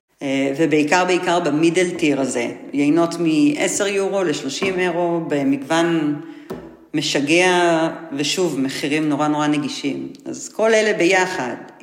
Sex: female